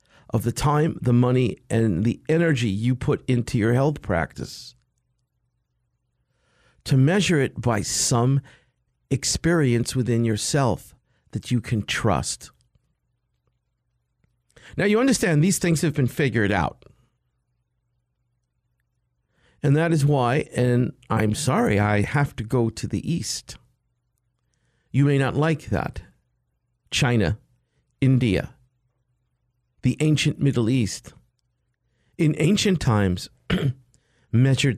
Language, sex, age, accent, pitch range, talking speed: English, male, 50-69, American, 120-130 Hz, 110 wpm